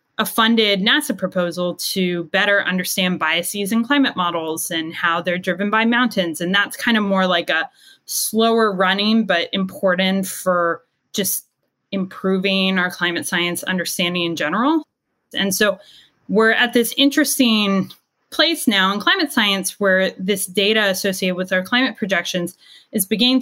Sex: female